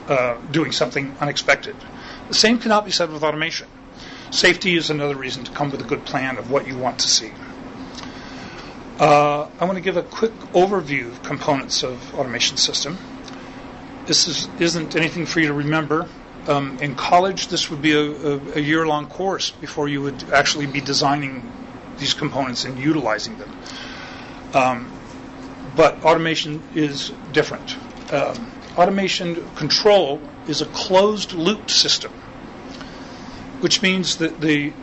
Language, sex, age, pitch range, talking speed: English, male, 40-59, 145-185 Hz, 145 wpm